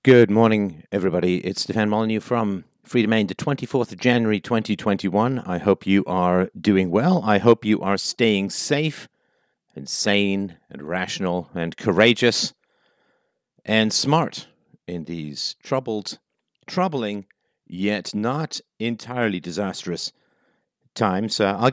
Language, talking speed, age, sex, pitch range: English, 125 wpm, 50-69, male, 95-120 Hz